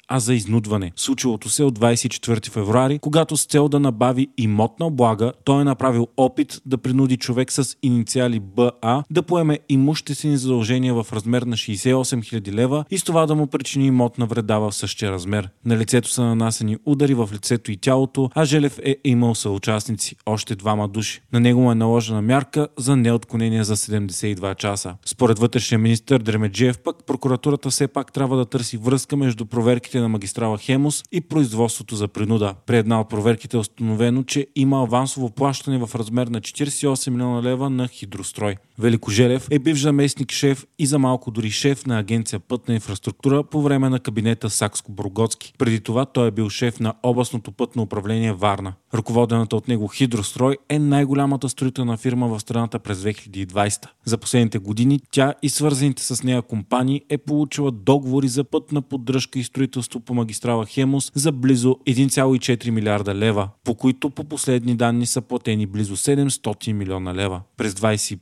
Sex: male